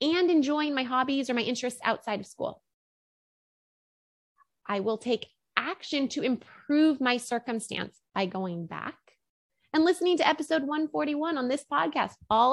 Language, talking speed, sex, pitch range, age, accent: English, 145 wpm, female, 220-305 Hz, 20-39, American